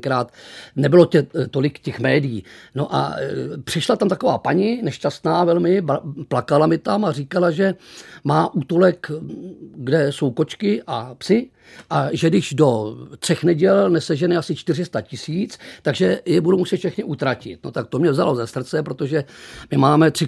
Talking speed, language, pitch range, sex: 160 wpm, Czech, 135-175 Hz, male